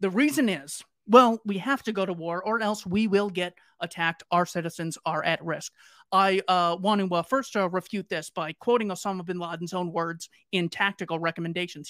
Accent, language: American, English